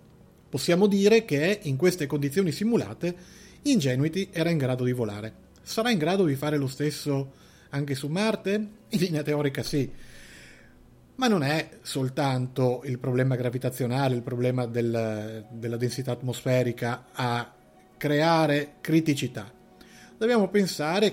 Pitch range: 120-155 Hz